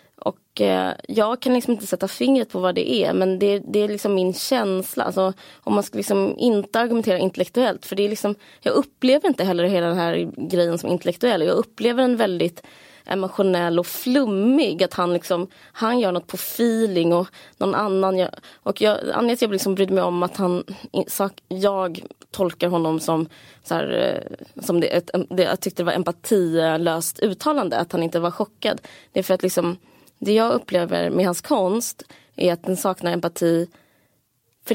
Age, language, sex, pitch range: 20-39, Swedish, female, 180-235 Hz